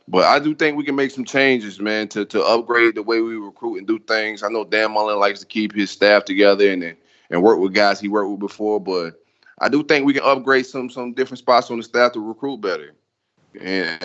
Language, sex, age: English, male, 20-39